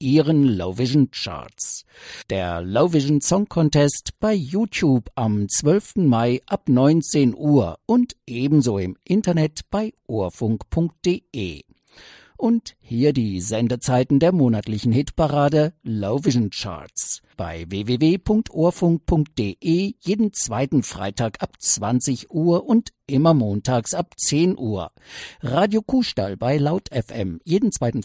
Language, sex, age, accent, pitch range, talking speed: English, male, 50-69, German, 110-170 Hz, 115 wpm